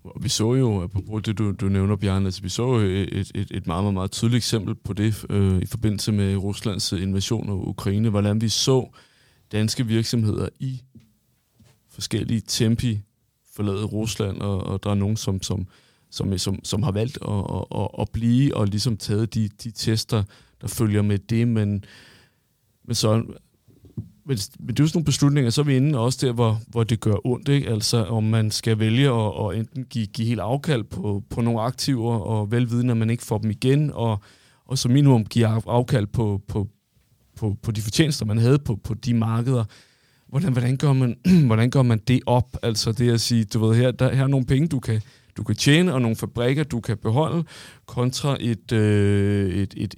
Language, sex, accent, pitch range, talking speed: Danish, male, native, 105-125 Hz, 200 wpm